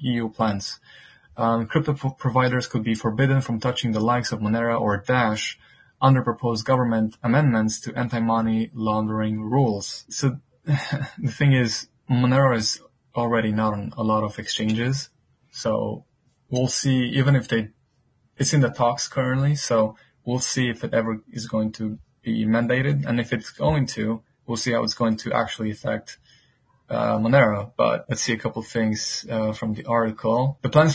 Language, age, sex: English, 20-39, male